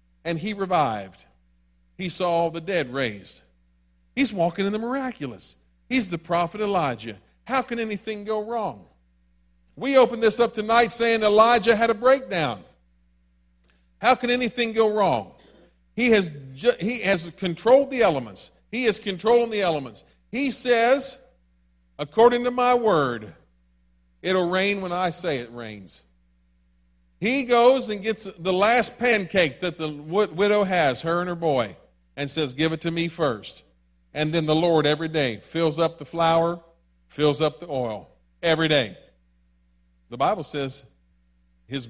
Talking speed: 150 wpm